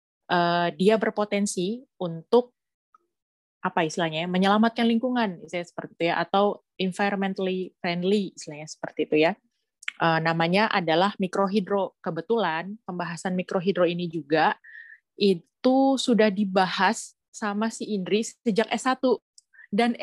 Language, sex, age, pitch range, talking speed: Indonesian, female, 20-39, 185-225 Hz, 105 wpm